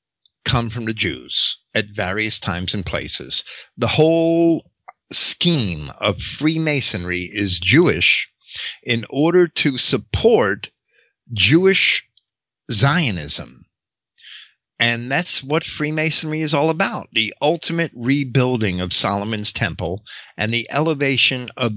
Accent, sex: American, male